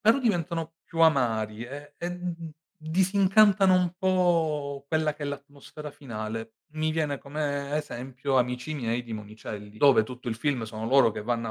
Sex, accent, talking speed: male, native, 155 wpm